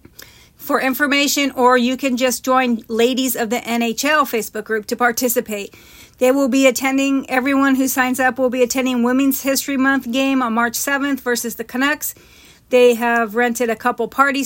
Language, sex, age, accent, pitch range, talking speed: English, female, 40-59, American, 235-265 Hz, 175 wpm